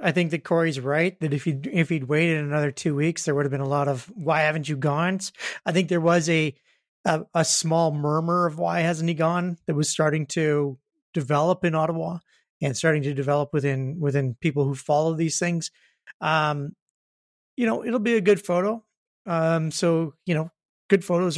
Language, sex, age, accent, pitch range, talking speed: English, male, 30-49, American, 150-180 Hz, 200 wpm